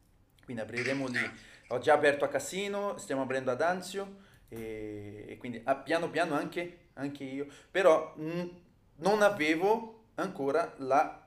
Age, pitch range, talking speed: 30-49, 125-160 Hz, 140 wpm